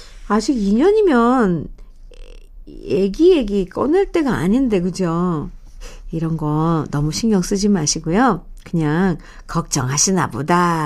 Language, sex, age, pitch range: Korean, female, 60-79, 175-260 Hz